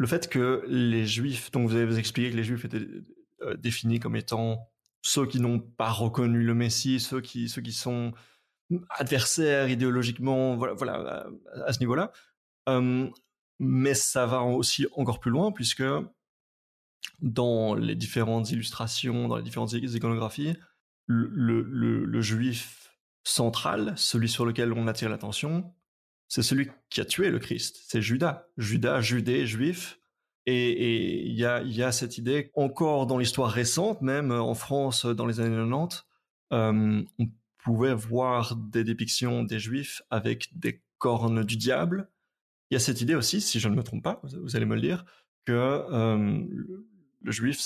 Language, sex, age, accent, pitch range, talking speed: French, male, 30-49, French, 115-135 Hz, 160 wpm